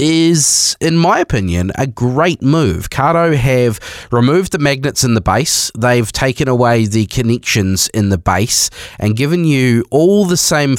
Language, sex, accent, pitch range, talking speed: English, male, Australian, 95-125 Hz, 160 wpm